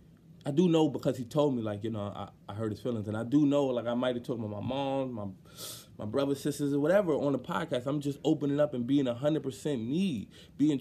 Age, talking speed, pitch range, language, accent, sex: 20-39, 260 wpm, 125-160 Hz, English, American, male